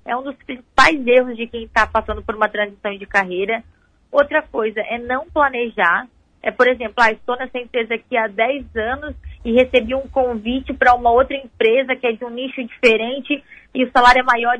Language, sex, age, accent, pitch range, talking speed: Portuguese, female, 20-39, Brazilian, 220-270 Hz, 195 wpm